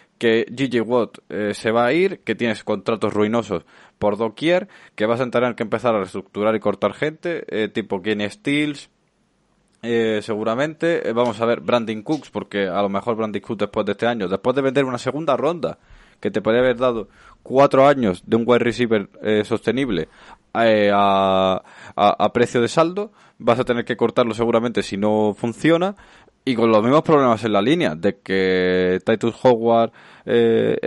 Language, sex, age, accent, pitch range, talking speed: Spanish, male, 20-39, Spanish, 100-120 Hz, 185 wpm